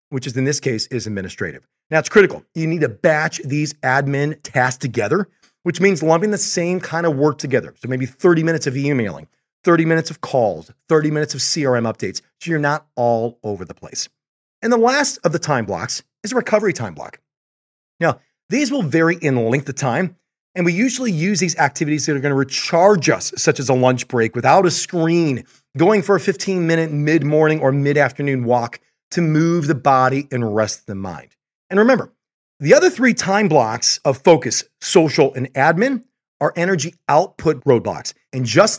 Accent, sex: American, male